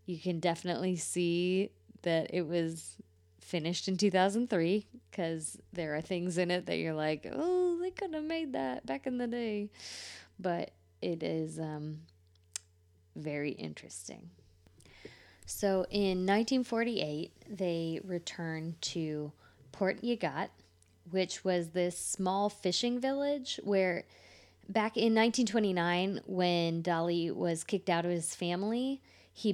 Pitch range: 160-195 Hz